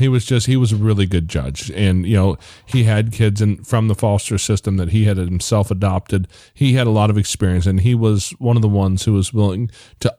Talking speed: 245 wpm